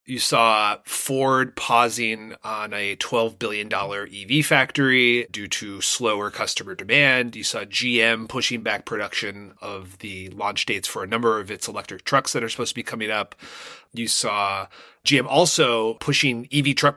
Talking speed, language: 165 wpm, English